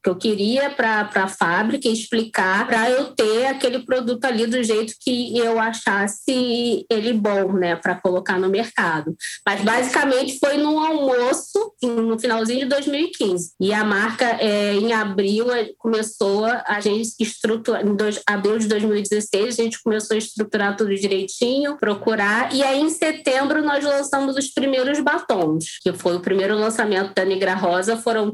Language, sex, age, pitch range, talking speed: Portuguese, female, 20-39, 200-250 Hz, 155 wpm